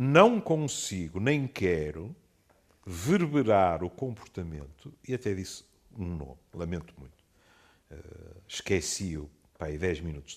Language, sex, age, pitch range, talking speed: Portuguese, male, 50-69, 90-125 Hz, 110 wpm